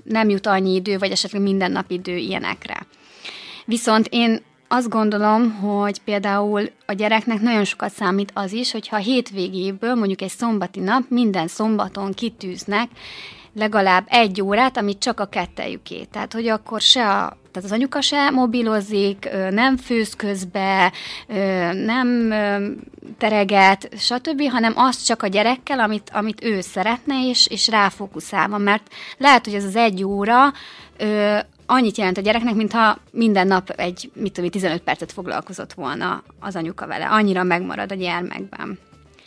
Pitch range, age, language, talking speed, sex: 190-225 Hz, 30-49, Hungarian, 145 wpm, female